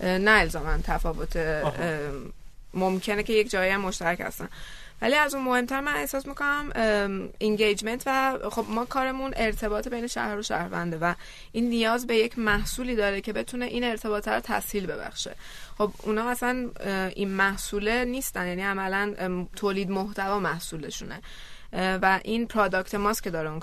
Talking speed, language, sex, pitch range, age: 140 wpm, Persian, female, 180-220 Hz, 20-39